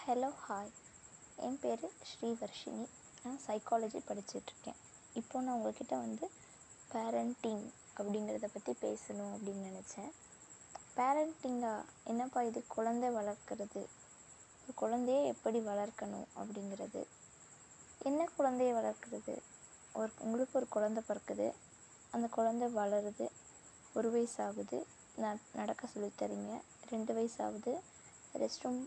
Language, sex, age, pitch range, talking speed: Tamil, female, 20-39, 215-250 Hz, 100 wpm